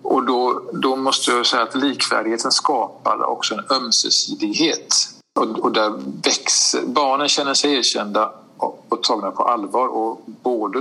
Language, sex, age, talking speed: Swedish, male, 50-69, 150 wpm